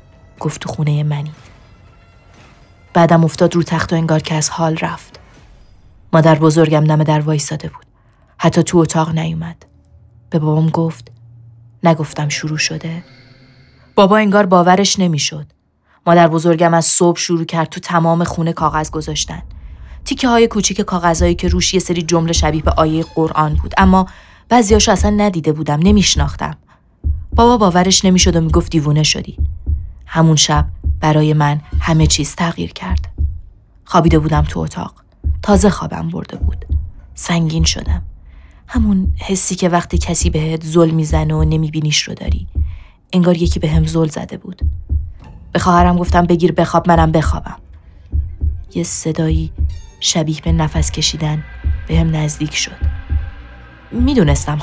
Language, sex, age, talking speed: English, female, 20-39, 140 wpm